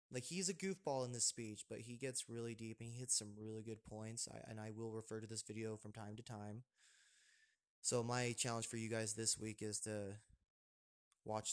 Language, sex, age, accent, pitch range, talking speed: English, male, 20-39, American, 110-120 Hz, 215 wpm